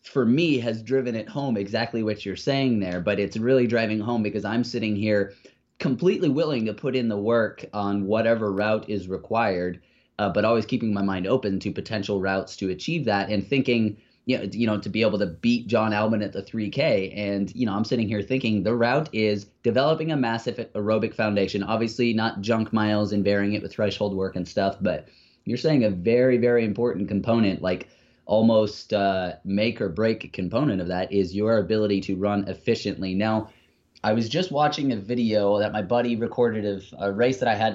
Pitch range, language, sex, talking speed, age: 100-120 Hz, English, male, 205 wpm, 20-39